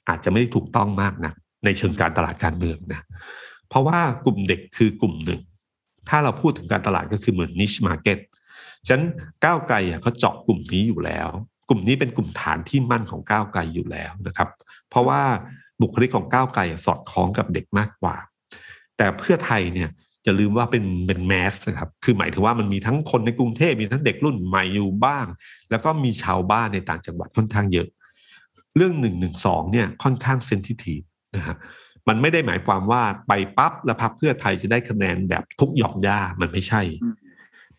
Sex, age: male, 60-79